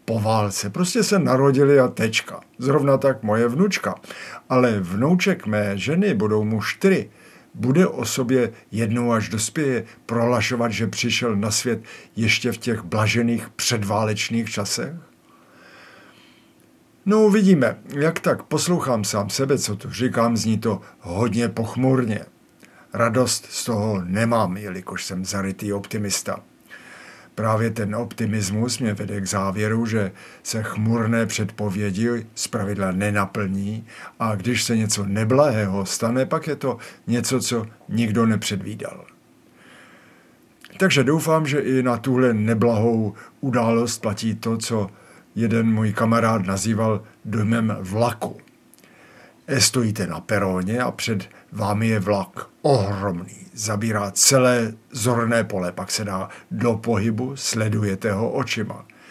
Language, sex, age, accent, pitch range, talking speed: Czech, male, 50-69, native, 105-120 Hz, 125 wpm